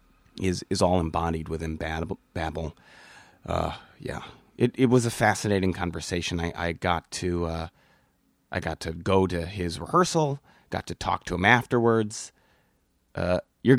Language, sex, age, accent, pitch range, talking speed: English, male, 30-49, American, 85-105 Hz, 150 wpm